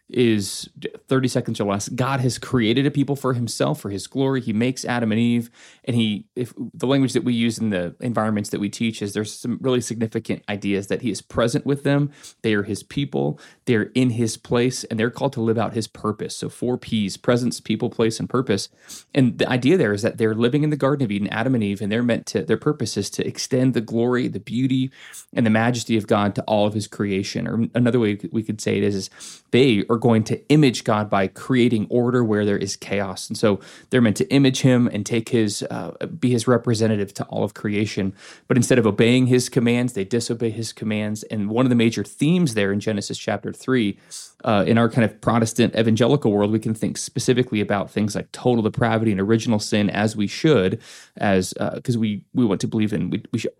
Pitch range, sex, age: 105-125 Hz, male, 20-39